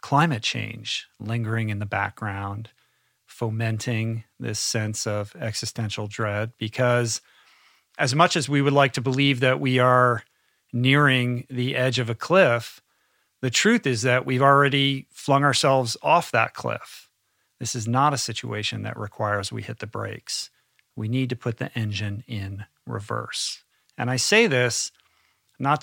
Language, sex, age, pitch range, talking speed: English, male, 40-59, 110-130 Hz, 150 wpm